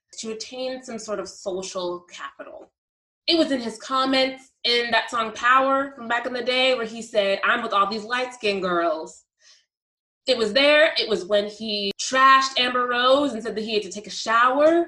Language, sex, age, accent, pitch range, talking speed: English, female, 20-39, American, 220-290 Hz, 200 wpm